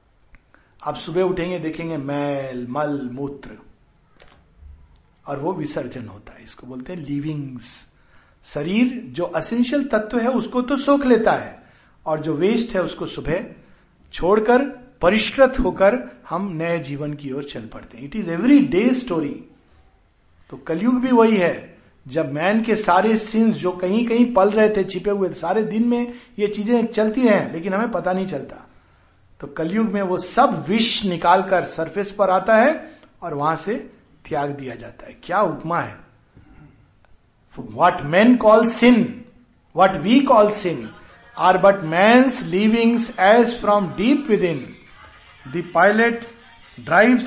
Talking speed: 150 wpm